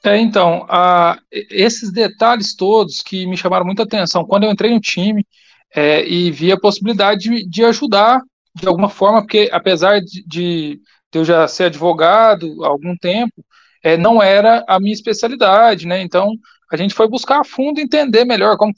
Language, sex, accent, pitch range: Portuguese, male, Brazilian, 180-230 Hz